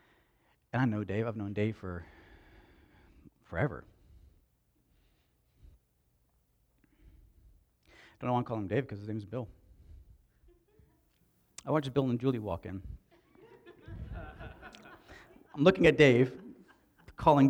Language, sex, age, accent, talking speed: English, male, 40-59, American, 115 wpm